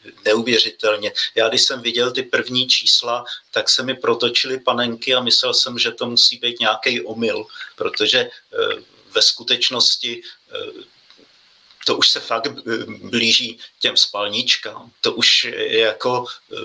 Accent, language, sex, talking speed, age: native, Czech, male, 135 wpm, 50-69